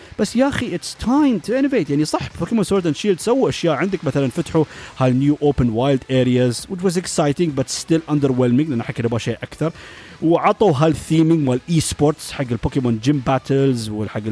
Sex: male